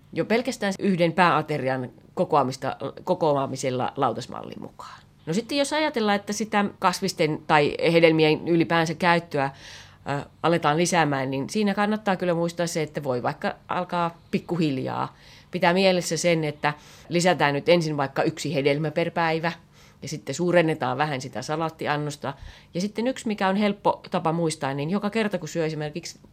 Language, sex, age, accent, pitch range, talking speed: Finnish, female, 30-49, native, 145-190 Hz, 145 wpm